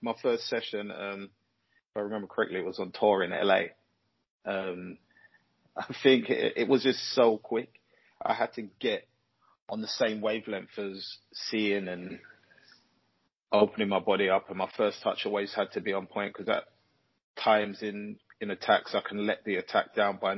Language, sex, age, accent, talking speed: English, male, 20-39, British, 180 wpm